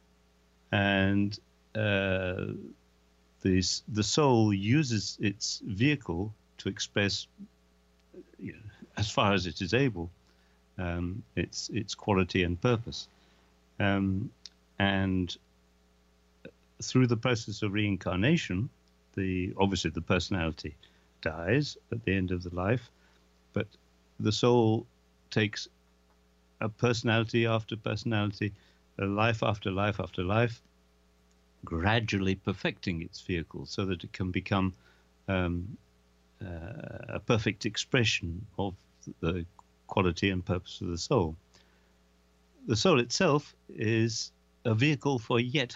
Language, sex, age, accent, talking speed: English, male, 50-69, British, 115 wpm